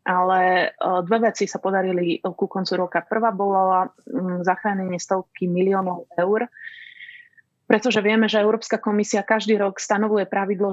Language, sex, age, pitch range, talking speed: Slovak, female, 30-49, 185-220 Hz, 130 wpm